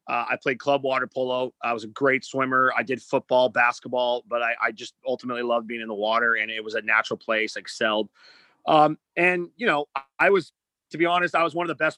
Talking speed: 235 wpm